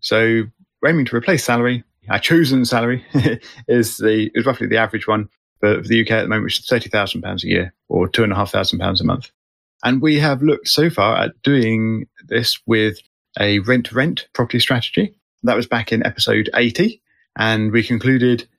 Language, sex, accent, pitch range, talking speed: English, male, British, 110-130 Hz, 205 wpm